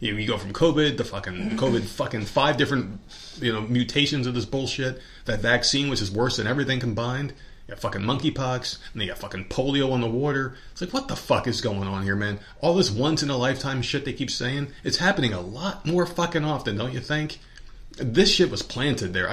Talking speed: 225 wpm